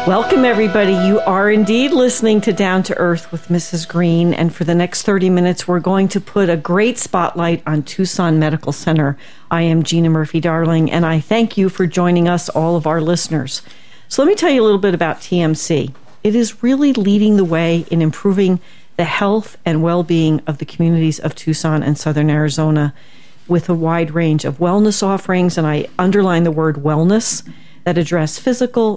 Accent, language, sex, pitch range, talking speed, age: American, English, female, 160-205 Hz, 190 wpm, 50-69